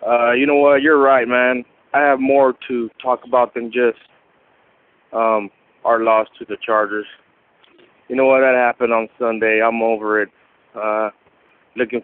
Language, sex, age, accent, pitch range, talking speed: English, male, 20-39, American, 110-125 Hz, 165 wpm